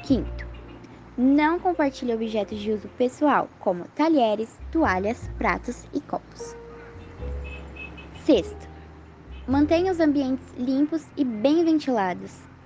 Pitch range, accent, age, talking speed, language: 195-280 Hz, Brazilian, 10-29, 100 wpm, Portuguese